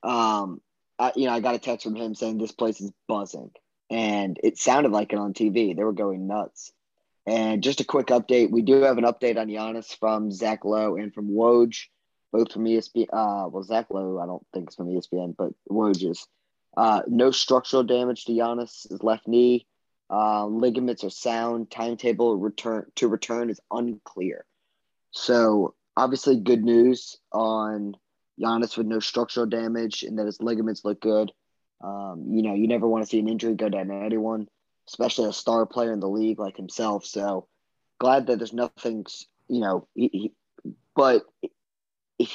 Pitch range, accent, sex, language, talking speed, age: 105-120 Hz, American, male, English, 175 wpm, 20-39